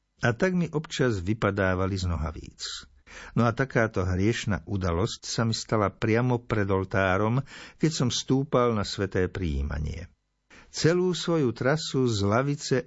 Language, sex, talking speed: Slovak, male, 135 wpm